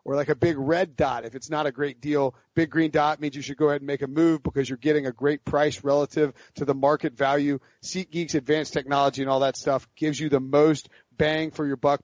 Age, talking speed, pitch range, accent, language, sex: 40-59, 250 wpm, 145-180 Hz, American, English, male